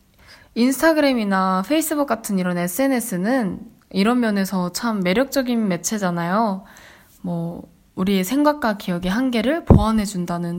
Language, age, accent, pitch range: Korean, 10-29, native, 185-240 Hz